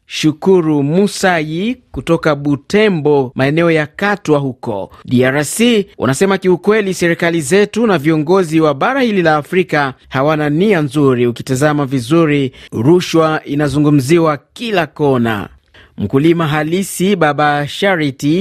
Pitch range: 140-185 Hz